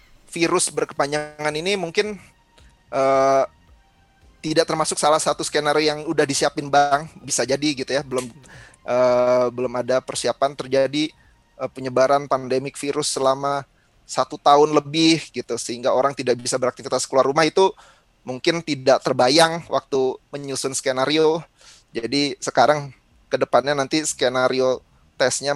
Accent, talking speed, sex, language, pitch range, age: Indonesian, 125 wpm, male, English, 130-160 Hz, 30-49